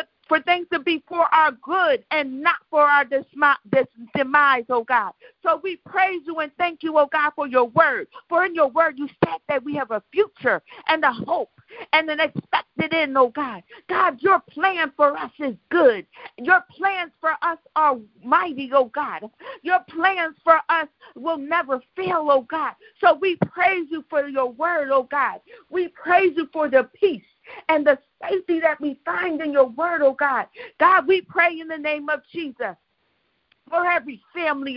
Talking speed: 185 wpm